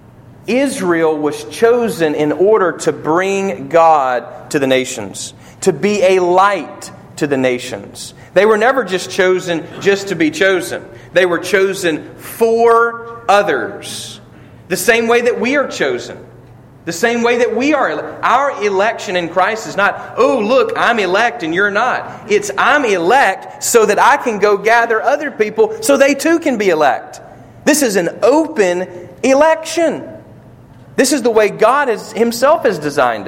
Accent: American